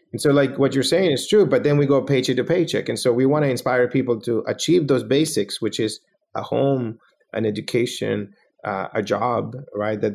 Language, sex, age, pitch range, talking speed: English, male, 30-49, 105-130 Hz, 220 wpm